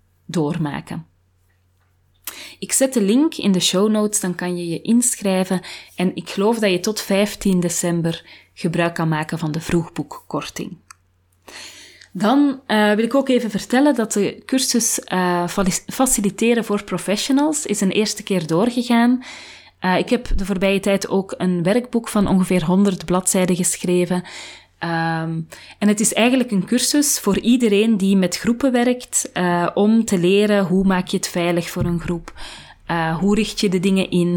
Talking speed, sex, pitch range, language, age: 160 wpm, female, 170-210 Hz, Dutch, 30-49